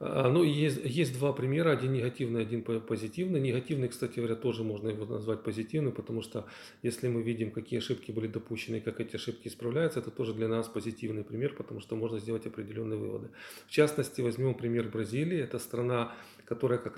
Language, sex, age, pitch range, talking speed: Russian, male, 40-59, 115-130 Hz, 180 wpm